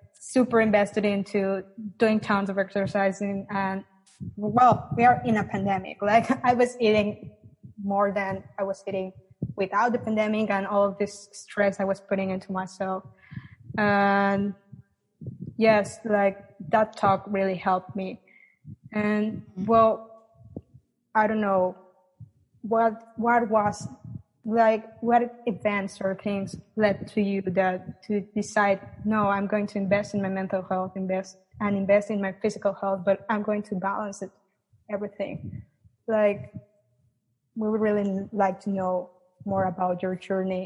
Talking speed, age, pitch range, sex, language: 145 wpm, 20-39, 190-210 Hz, female, English